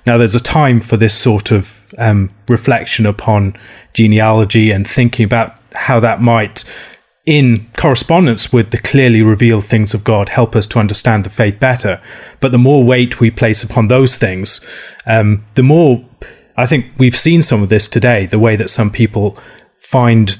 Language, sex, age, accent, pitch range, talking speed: English, male, 30-49, British, 105-125 Hz, 175 wpm